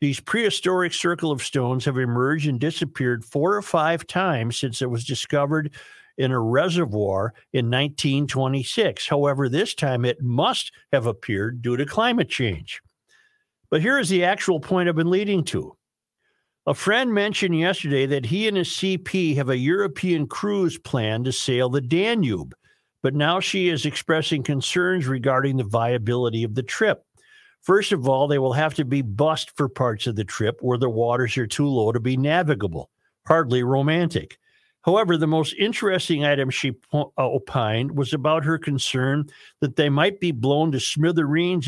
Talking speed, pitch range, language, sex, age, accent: 165 wpm, 130-170 Hz, English, male, 50-69, American